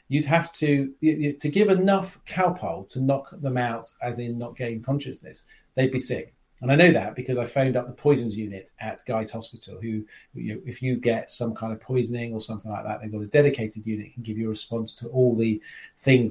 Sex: male